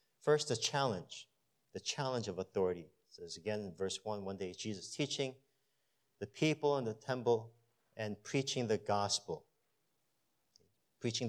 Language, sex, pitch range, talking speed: English, male, 105-135 Hz, 145 wpm